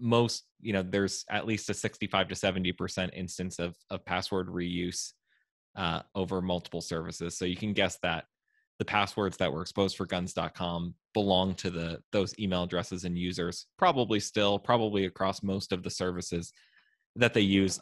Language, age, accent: English, 20-39, American